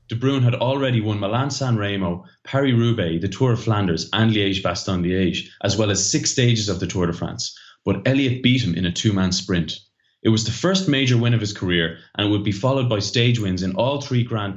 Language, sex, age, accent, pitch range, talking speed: English, male, 20-39, Irish, 95-120 Hz, 220 wpm